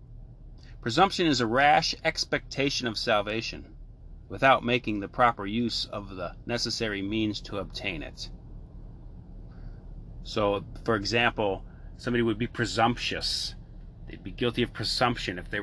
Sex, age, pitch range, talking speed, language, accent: male, 30-49, 95-120 Hz, 125 wpm, English, American